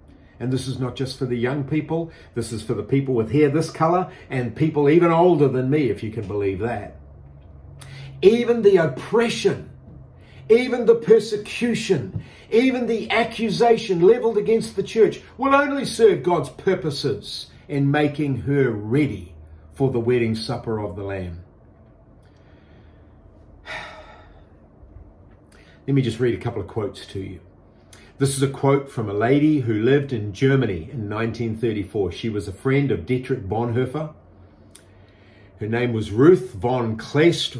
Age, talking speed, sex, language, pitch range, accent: 50-69, 150 wpm, male, English, 105-145 Hz, Australian